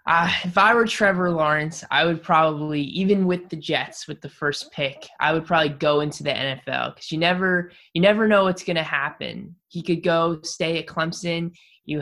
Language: English